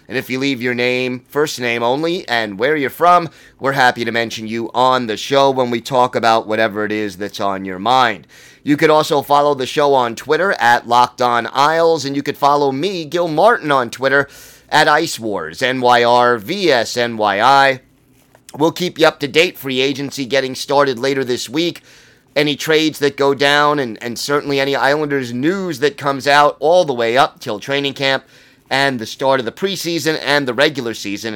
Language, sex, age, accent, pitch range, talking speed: English, male, 30-49, American, 125-145 Hz, 190 wpm